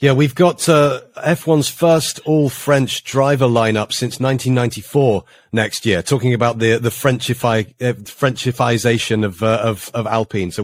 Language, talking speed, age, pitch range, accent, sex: English, 145 wpm, 30-49, 115-140 Hz, British, male